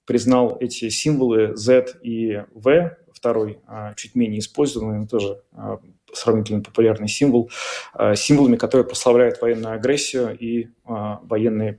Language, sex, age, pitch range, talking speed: Russian, male, 20-39, 110-130 Hz, 110 wpm